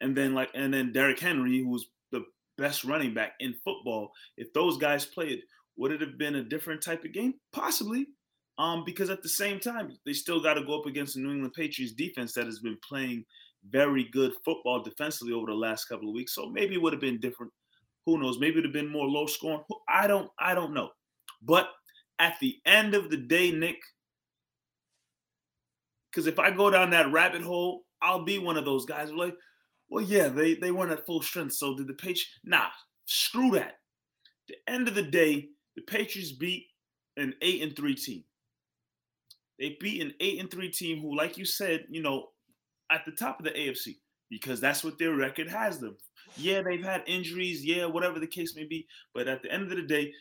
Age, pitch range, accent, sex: 30-49, 140-195 Hz, American, male